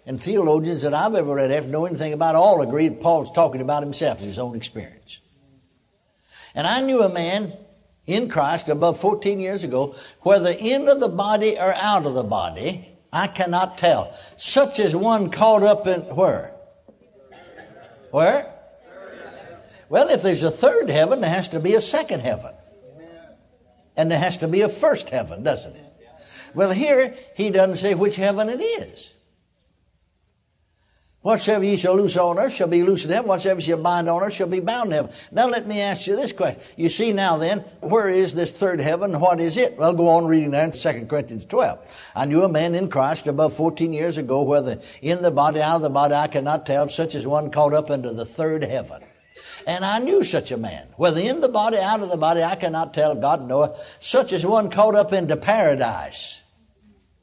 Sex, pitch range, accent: male, 150-200 Hz, American